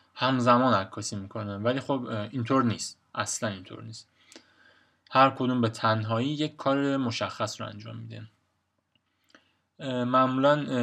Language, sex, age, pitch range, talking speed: Persian, male, 20-39, 110-130 Hz, 115 wpm